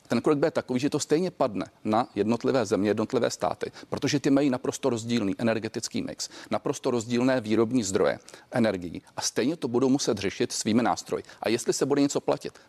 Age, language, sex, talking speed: 40-59, Czech, male, 190 wpm